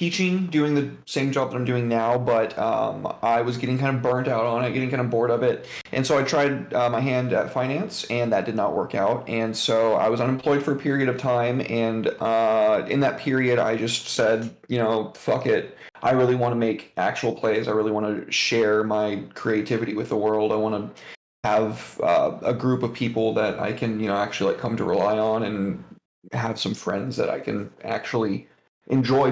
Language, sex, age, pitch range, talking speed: English, male, 30-49, 110-125 Hz, 225 wpm